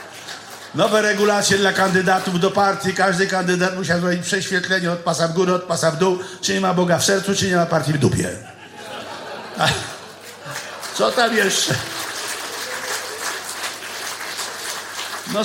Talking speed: 140 wpm